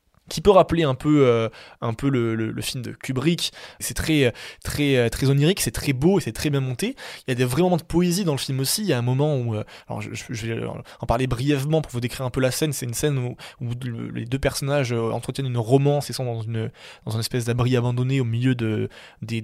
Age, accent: 20-39, French